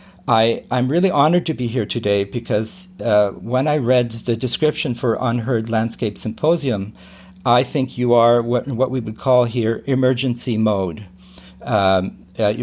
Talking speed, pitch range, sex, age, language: 150 wpm, 105-130 Hz, male, 50-69, English